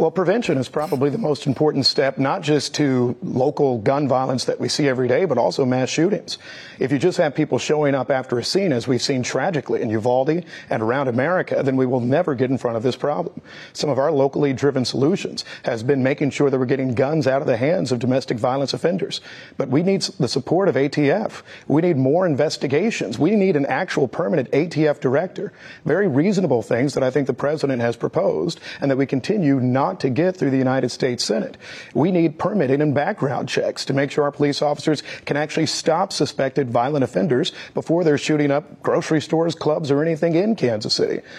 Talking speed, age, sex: 210 wpm, 50-69, male